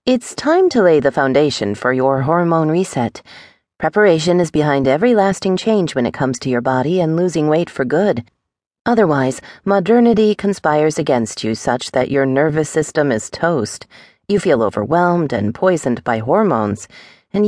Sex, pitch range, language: female, 135-200 Hz, English